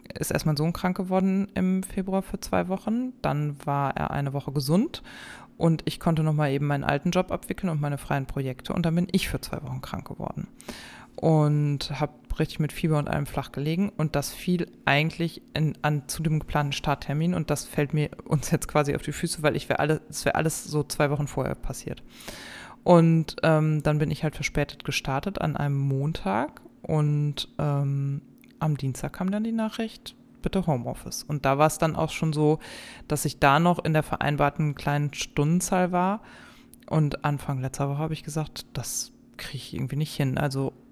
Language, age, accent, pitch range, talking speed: German, 20-39, German, 145-165 Hz, 190 wpm